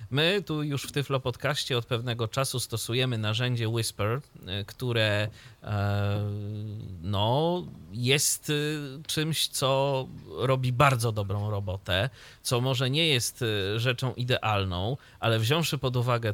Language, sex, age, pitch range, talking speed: Polish, male, 30-49, 105-135 Hz, 115 wpm